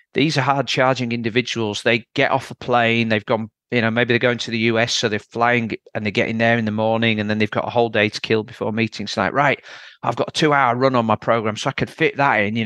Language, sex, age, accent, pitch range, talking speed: English, male, 40-59, British, 110-130 Hz, 275 wpm